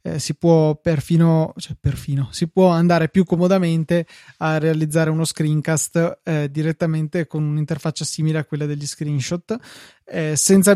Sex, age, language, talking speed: male, 20-39, Italian, 125 wpm